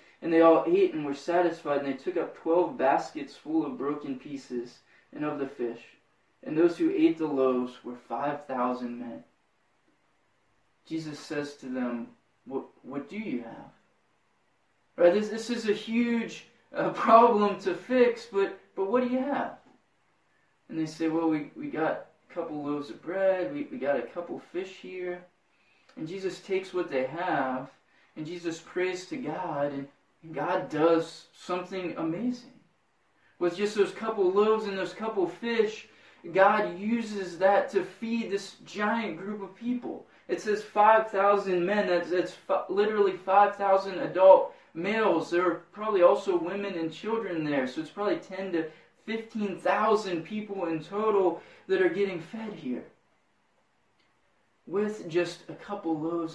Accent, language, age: American, English, 20-39